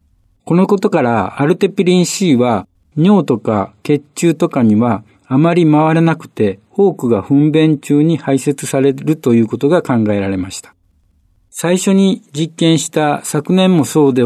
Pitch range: 115-160 Hz